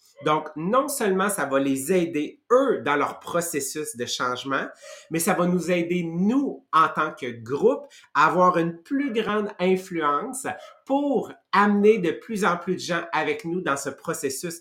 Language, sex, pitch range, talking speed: English, male, 145-205 Hz, 175 wpm